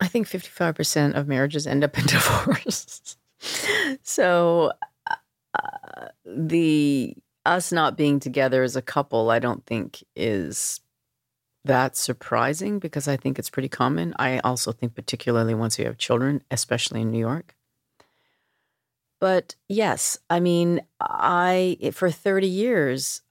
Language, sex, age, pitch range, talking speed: English, female, 40-59, 125-165 Hz, 130 wpm